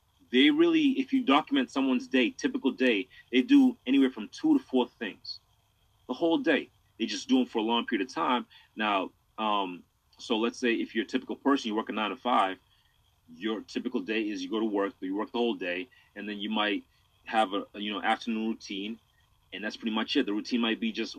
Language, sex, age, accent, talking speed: English, male, 30-49, American, 230 wpm